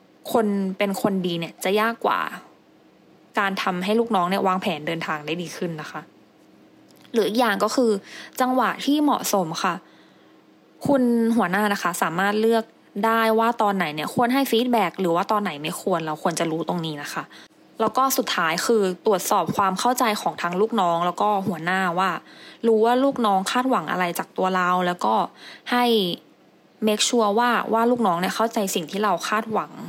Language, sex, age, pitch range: English, female, 20-39, 185-235 Hz